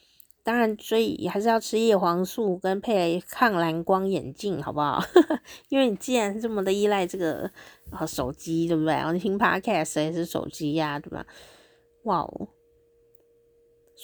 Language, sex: Chinese, female